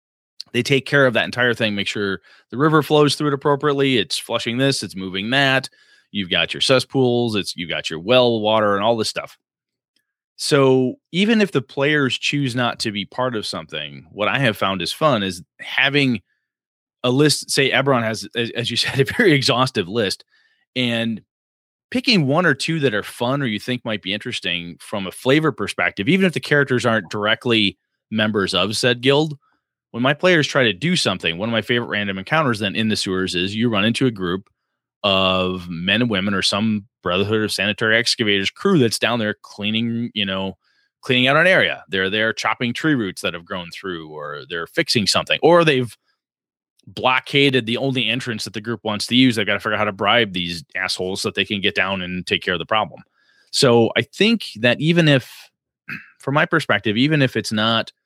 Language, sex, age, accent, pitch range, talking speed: English, male, 30-49, American, 105-135 Hz, 205 wpm